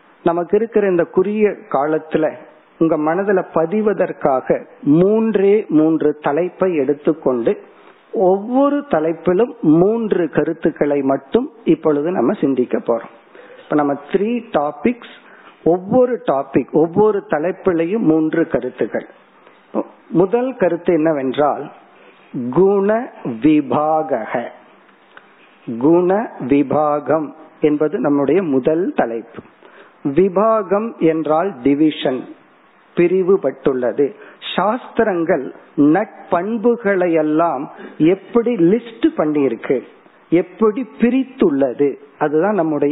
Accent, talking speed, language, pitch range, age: native, 60 wpm, Tamil, 155-205 Hz, 50-69